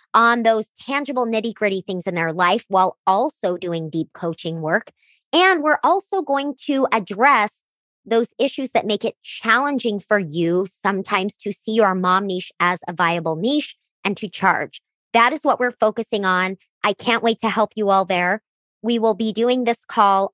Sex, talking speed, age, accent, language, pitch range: male, 180 wpm, 30-49, American, English, 180-235 Hz